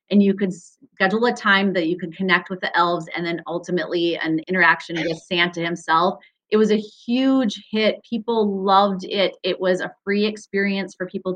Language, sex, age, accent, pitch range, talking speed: English, female, 30-49, American, 175-205 Hz, 190 wpm